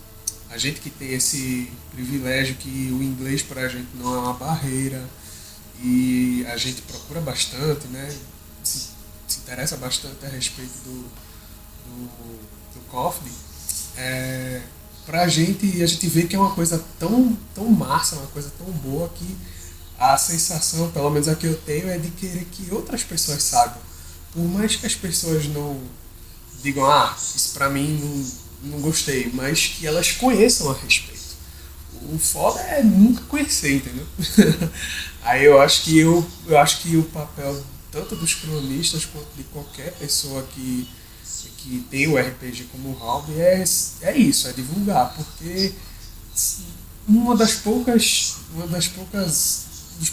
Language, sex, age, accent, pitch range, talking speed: Portuguese, male, 20-39, Brazilian, 125-165 Hz, 155 wpm